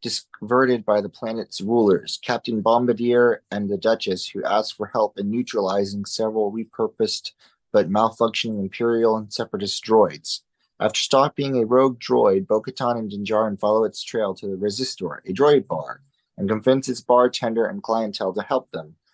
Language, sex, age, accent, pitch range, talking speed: English, male, 30-49, American, 100-125 Hz, 155 wpm